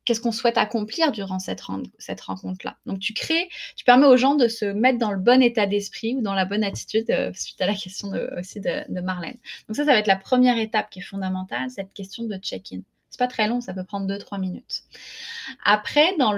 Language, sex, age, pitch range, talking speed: French, female, 20-39, 195-245 Hz, 240 wpm